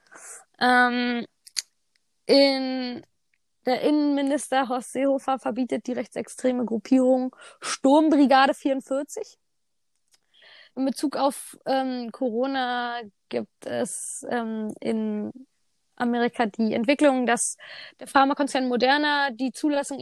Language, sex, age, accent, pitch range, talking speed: German, female, 20-39, German, 240-275 Hz, 90 wpm